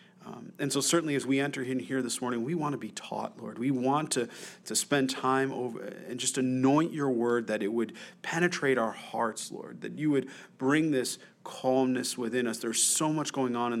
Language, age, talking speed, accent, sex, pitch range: English, 40-59, 215 wpm, American, male, 115-140 Hz